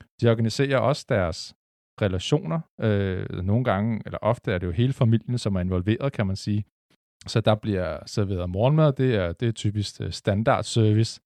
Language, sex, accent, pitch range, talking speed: Danish, male, native, 95-115 Hz, 170 wpm